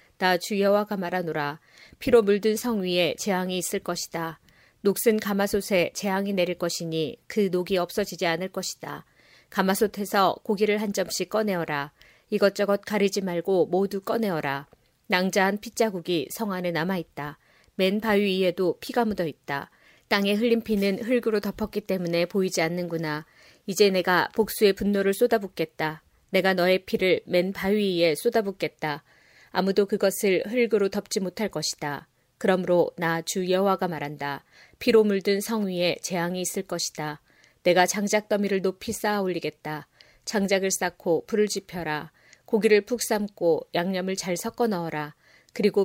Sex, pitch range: female, 175-210 Hz